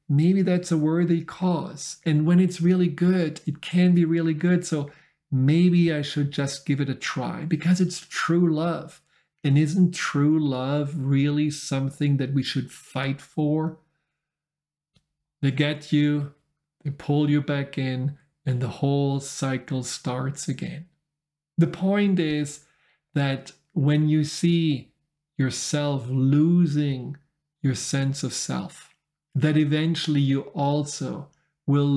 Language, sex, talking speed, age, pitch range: English, male, 135 wpm, 50-69, 140-155 Hz